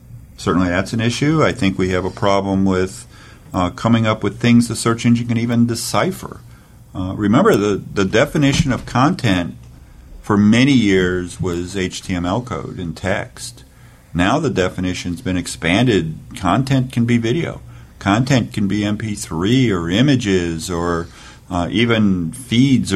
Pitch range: 90-120 Hz